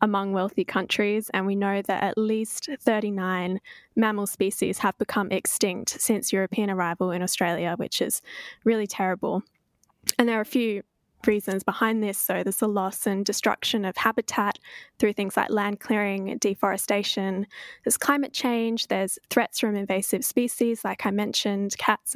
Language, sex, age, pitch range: English, female, 10-29, 190-225 Hz